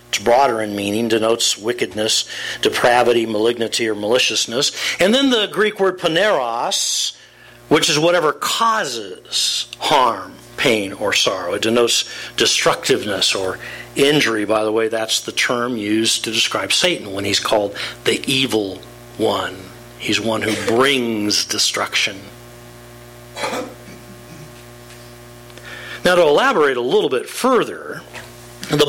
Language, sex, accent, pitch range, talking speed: English, male, American, 115-140 Hz, 120 wpm